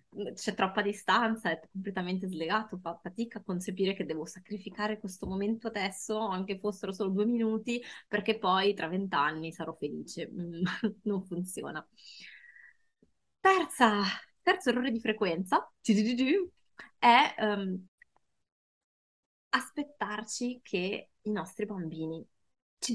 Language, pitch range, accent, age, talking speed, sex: Italian, 175-215 Hz, native, 20-39, 110 wpm, female